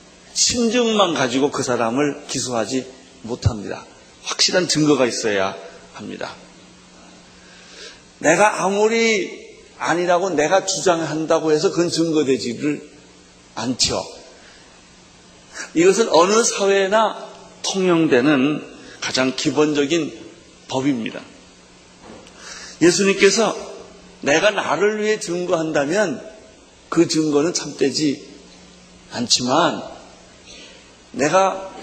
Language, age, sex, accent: Korean, 40-59, male, native